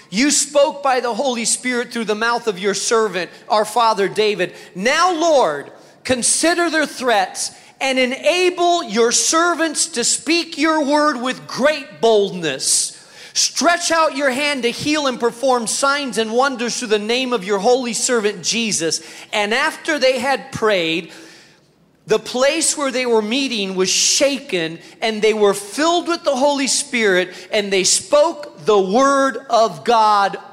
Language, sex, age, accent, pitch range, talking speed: English, male, 40-59, American, 190-265 Hz, 155 wpm